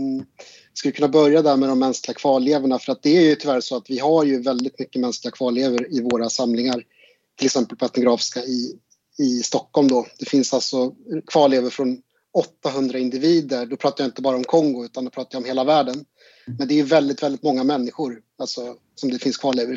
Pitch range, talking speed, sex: 130-155 Hz, 205 wpm, male